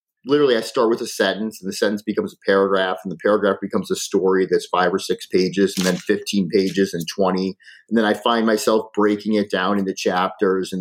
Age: 30-49